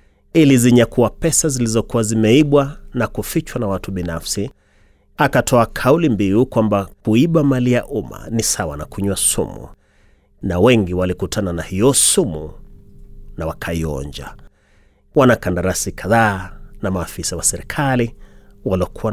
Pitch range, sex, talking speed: 105-130 Hz, male, 120 wpm